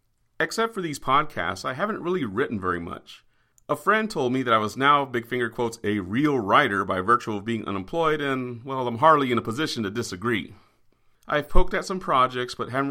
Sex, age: male, 40-59